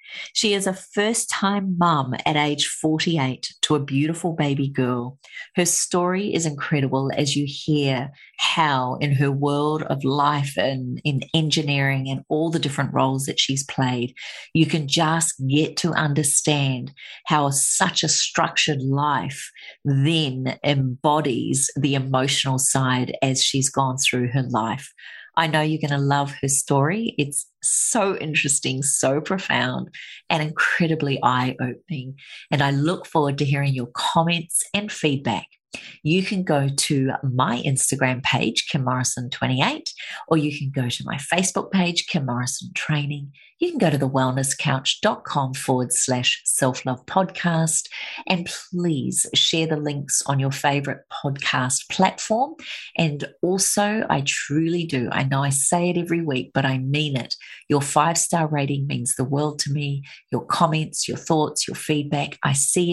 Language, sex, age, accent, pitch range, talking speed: English, female, 40-59, Australian, 135-165 Hz, 150 wpm